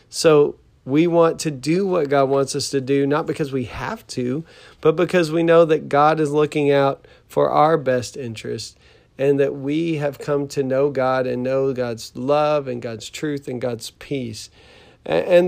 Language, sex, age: English, male, 40-59